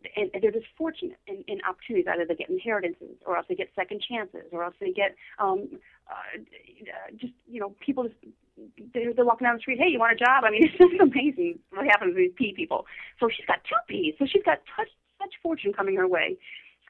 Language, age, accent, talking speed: English, 30-49, American, 230 wpm